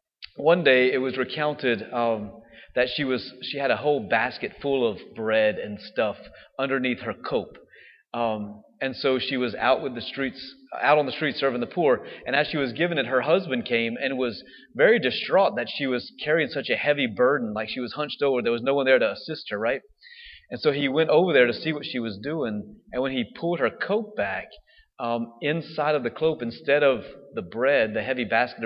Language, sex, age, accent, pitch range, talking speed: English, male, 30-49, American, 120-160 Hz, 220 wpm